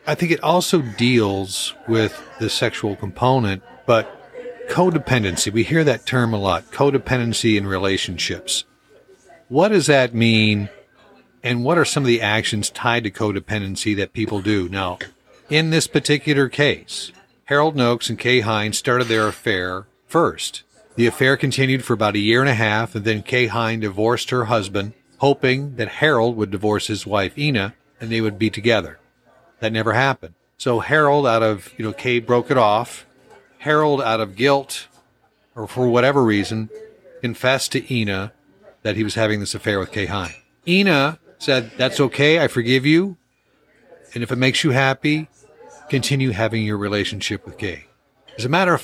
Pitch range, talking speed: 105-140 Hz, 170 wpm